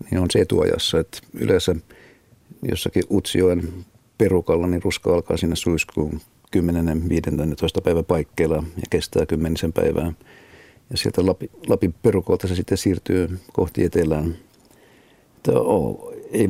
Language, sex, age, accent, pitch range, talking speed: Finnish, male, 50-69, native, 85-95 Hz, 120 wpm